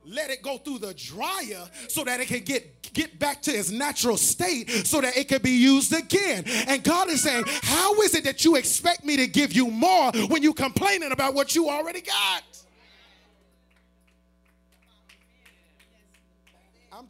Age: 30-49